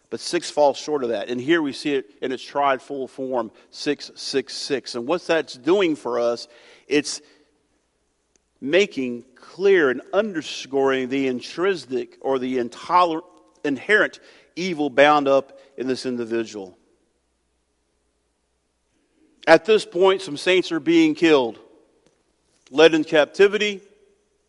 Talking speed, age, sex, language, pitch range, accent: 125 wpm, 50-69, male, English, 125-180 Hz, American